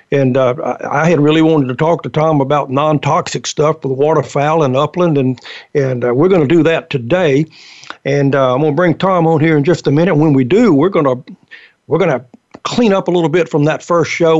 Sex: male